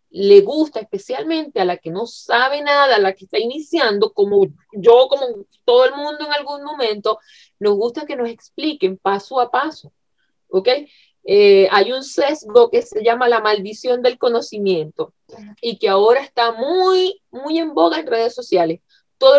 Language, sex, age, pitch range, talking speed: Spanish, female, 30-49, 230-370 Hz, 170 wpm